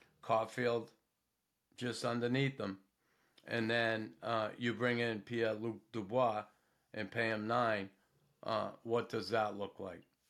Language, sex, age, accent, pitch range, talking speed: English, male, 50-69, American, 110-130 Hz, 130 wpm